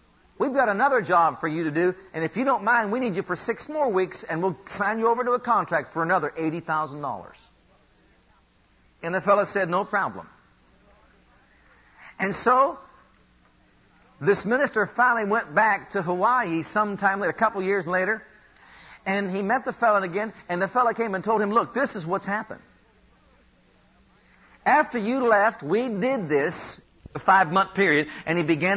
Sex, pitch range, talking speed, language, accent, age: male, 180-230 Hz, 170 wpm, English, American, 50-69